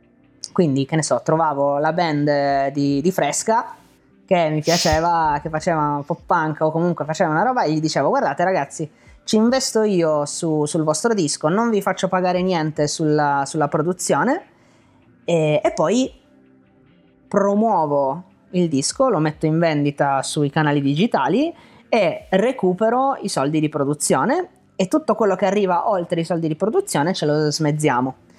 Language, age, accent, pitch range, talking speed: Italian, 20-39, native, 145-185 Hz, 155 wpm